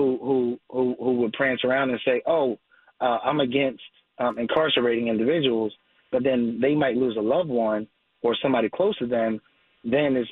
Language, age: English, 30-49